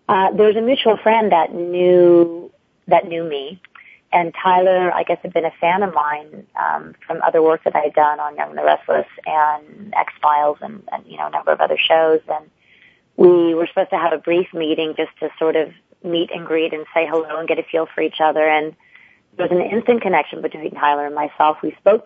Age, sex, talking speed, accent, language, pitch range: 30-49, female, 230 wpm, American, English, 155-175 Hz